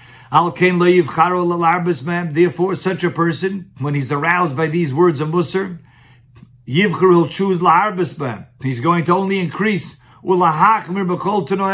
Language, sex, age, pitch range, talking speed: English, male, 50-69, 130-180 Hz, 100 wpm